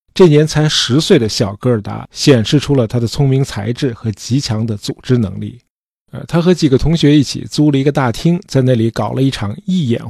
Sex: male